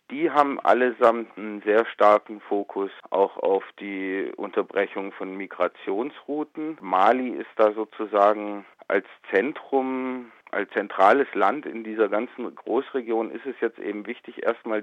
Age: 40-59